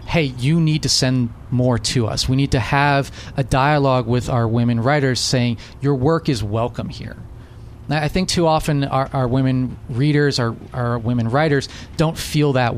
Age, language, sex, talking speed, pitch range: 30-49, English, male, 190 wpm, 115-145 Hz